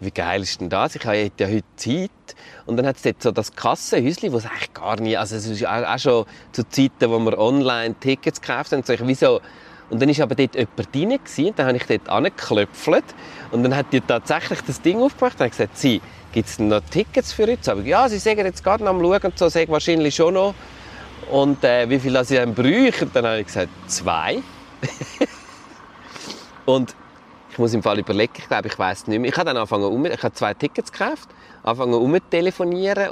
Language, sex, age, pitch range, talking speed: German, male, 30-49, 105-140 Hz, 230 wpm